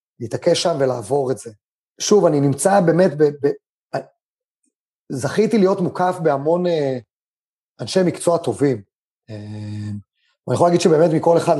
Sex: male